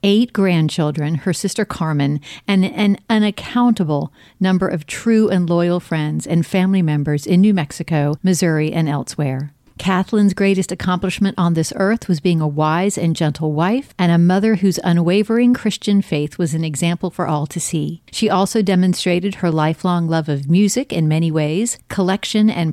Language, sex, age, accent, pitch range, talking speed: English, female, 50-69, American, 160-205 Hz, 165 wpm